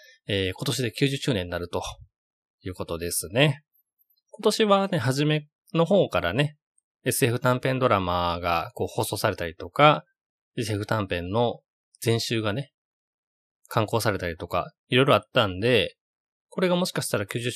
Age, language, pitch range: 20-39, Japanese, 100-145 Hz